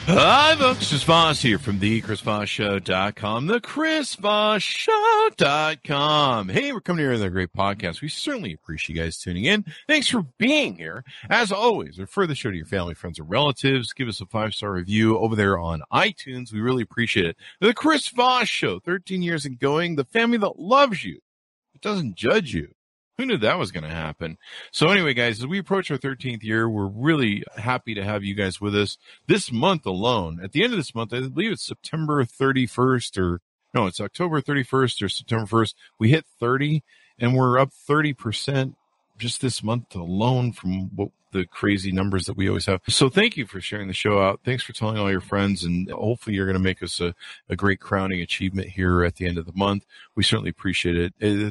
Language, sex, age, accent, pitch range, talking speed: English, male, 50-69, American, 95-140 Hz, 205 wpm